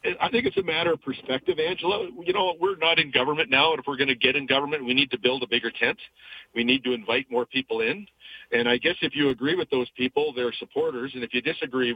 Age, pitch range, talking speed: 40-59, 120-150 Hz, 260 wpm